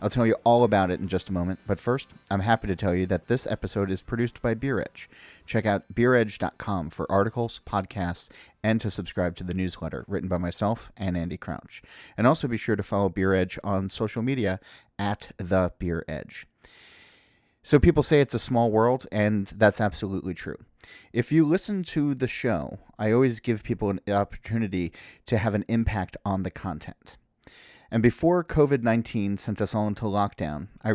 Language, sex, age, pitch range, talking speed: English, male, 30-49, 95-120 Hz, 185 wpm